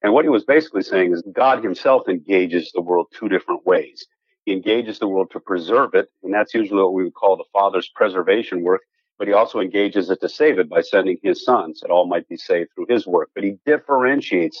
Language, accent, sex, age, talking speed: English, American, male, 50-69, 230 wpm